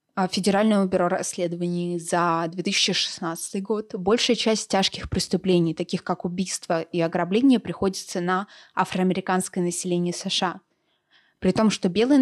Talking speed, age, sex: 120 wpm, 20-39, female